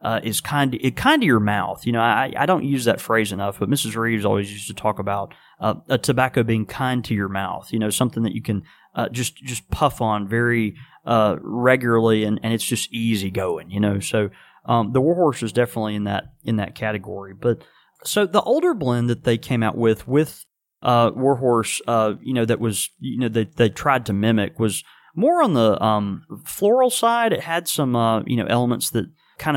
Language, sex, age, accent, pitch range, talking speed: English, male, 30-49, American, 105-130 Hz, 220 wpm